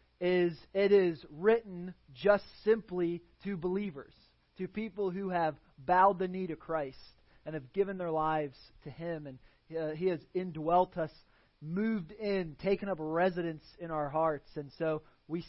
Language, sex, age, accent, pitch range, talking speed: English, male, 30-49, American, 150-185 Hz, 155 wpm